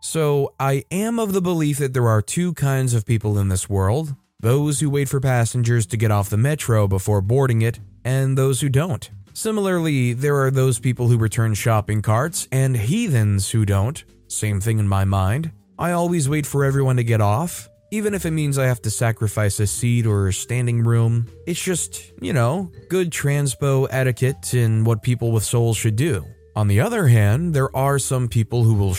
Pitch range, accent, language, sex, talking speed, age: 110-140 Hz, American, English, male, 200 wpm, 20-39